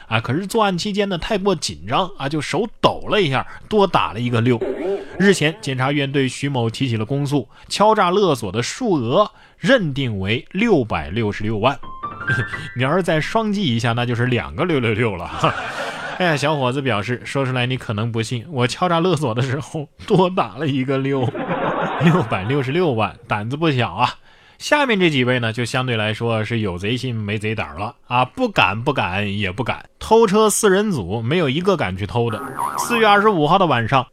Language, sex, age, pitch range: Chinese, male, 20-39, 120-185 Hz